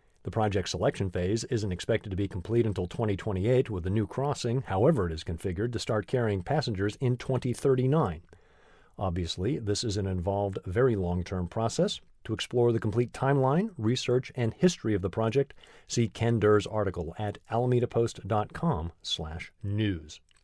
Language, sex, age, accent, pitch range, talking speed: English, male, 40-59, American, 100-125 Hz, 150 wpm